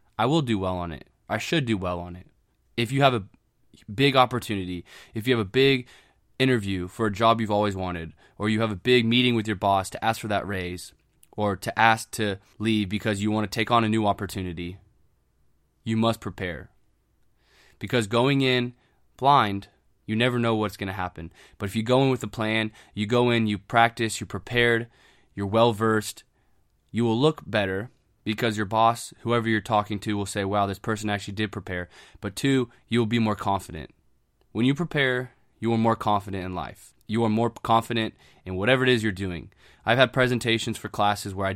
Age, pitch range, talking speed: 20-39, 100-115 Hz, 200 wpm